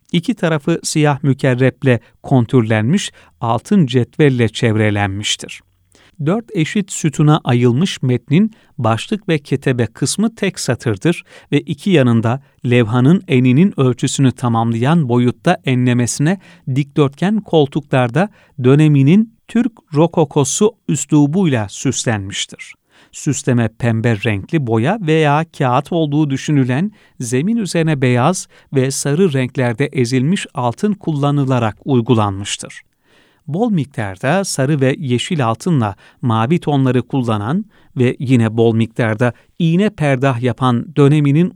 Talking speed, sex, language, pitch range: 100 wpm, male, Turkish, 125-175 Hz